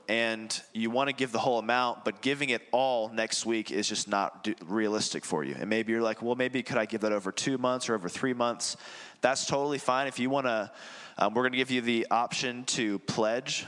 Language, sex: English, male